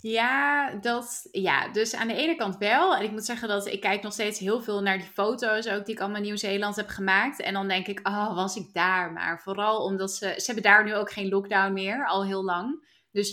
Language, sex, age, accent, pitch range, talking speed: Dutch, female, 20-39, Dutch, 195-230 Hz, 245 wpm